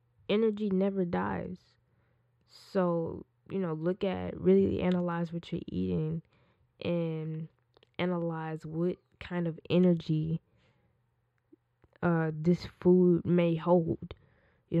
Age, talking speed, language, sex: 10-29, 100 wpm, English, female